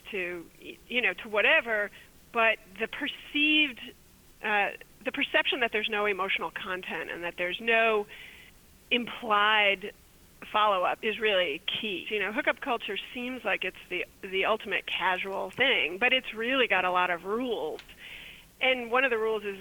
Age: 30-49